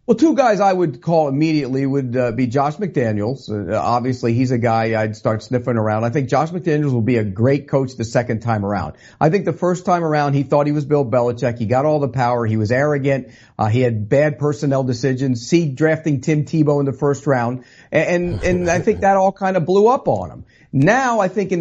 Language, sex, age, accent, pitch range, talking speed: English, male, 50-69, American, 125-165 Hz, 235 wpm